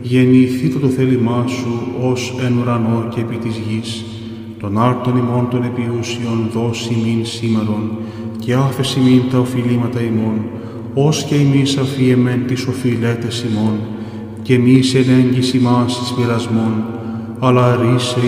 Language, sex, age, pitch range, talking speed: English, male, 20-39, 115-125 Hz, 125 wpm